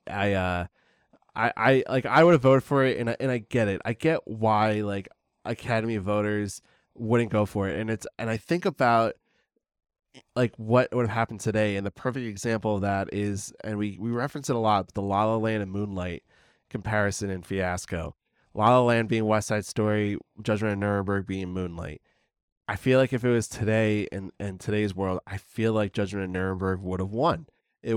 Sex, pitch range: male, 100-115 Hz